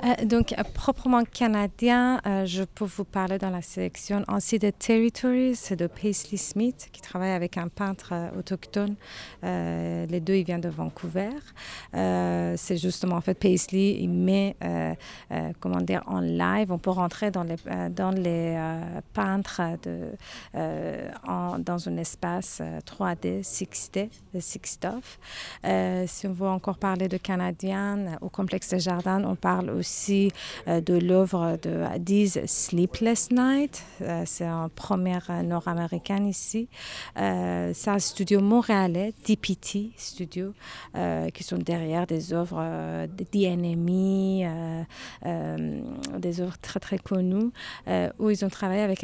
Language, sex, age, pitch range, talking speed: French, female, 30-49, 165-200 Hz, 140 wpm